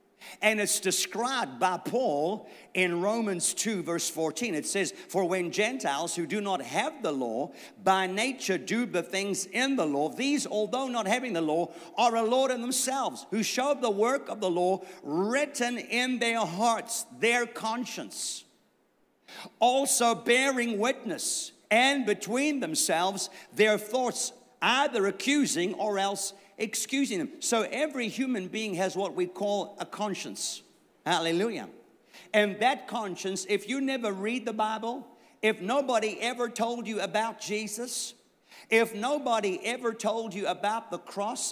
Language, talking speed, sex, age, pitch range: English, 145 wpm, male, 50-69, 195-245 Hz